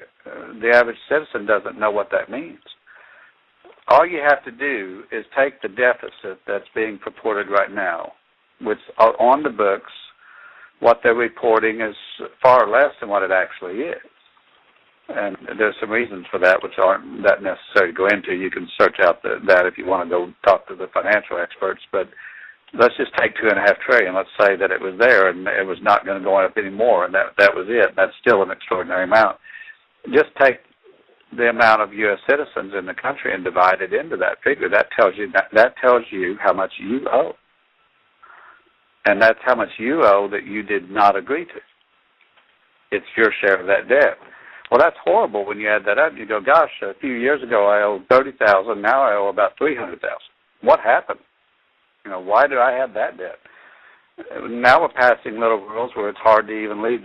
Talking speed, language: 200 wpm, English